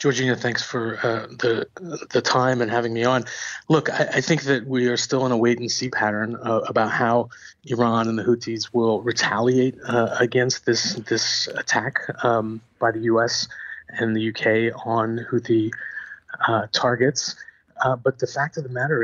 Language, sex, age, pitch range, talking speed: English, male, 30-49, 115-140 Hz, 175 wpm